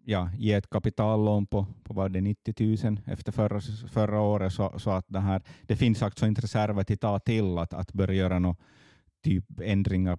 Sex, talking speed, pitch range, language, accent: male, 200 wpm, 90-110 Hz, Swedish, Finnish